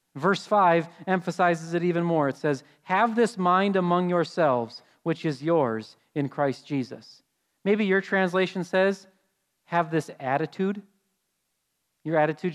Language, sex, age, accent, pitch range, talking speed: English, male, 40-59, American, 150-200 Hz, 135 wpm